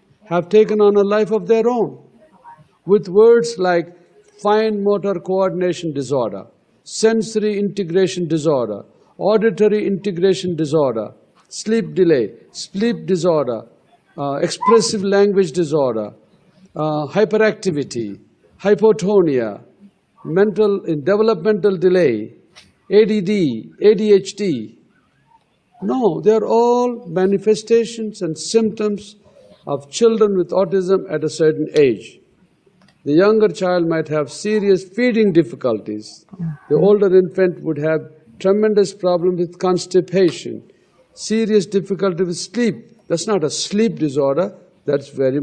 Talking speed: 105 wpm